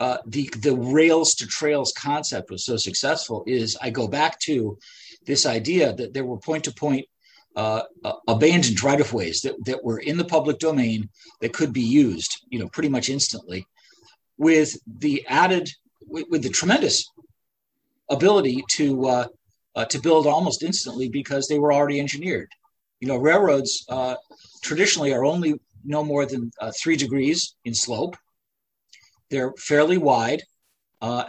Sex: male